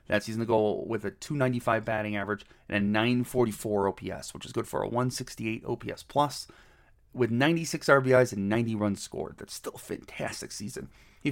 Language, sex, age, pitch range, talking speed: English, male, 30-49, 105-125 Hz, 180 wpm